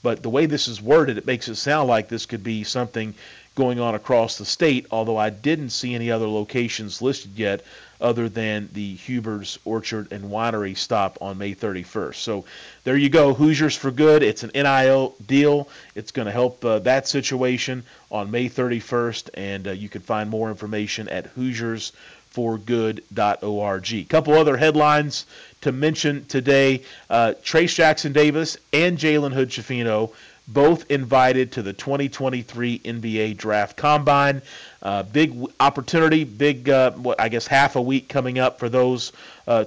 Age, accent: 40-59, American